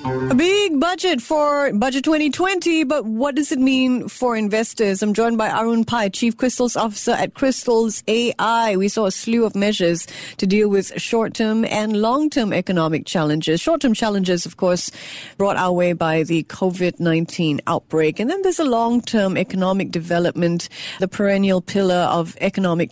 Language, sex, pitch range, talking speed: English, female, 165-230 Hz, 160 wpm